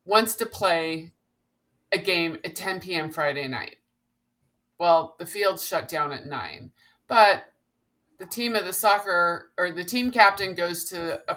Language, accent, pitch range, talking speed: English, American, 175-265 Hz, 160 wpm